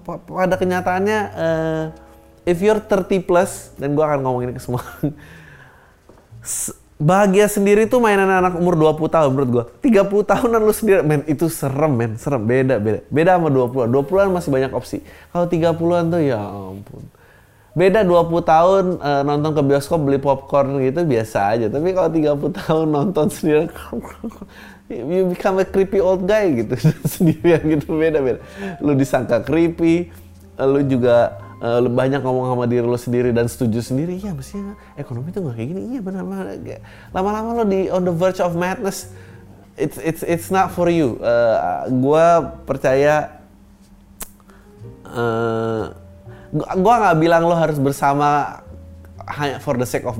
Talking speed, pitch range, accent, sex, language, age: 150 wpm, 120-180 Hz, native, male, Indonesian, 20-39